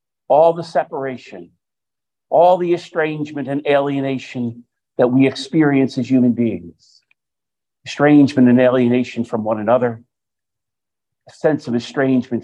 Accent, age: American, 50-69